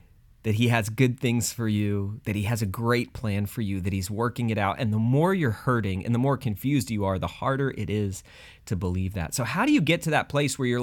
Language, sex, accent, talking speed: English, male, American, 265 wpm